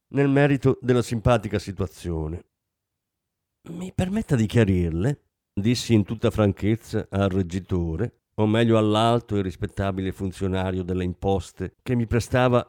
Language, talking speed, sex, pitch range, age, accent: Italian, 125 wpm, male, 95-120 Hz, 50-69, native